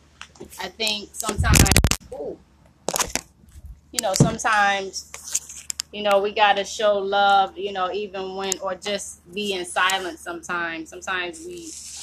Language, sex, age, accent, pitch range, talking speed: English, female, 20-39, American, 170-210 Hz, 125 wpm